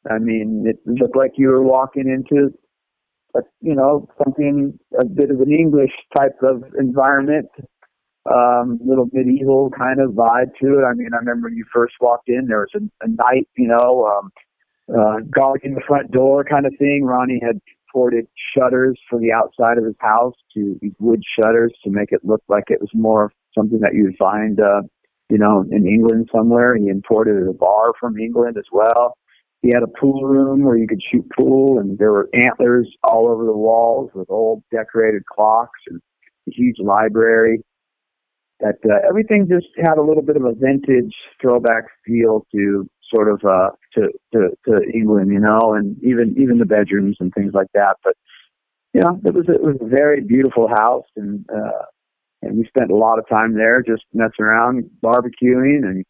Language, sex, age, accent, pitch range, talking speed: English, male, 50-69, American, 110-135 Hz, 195 wpm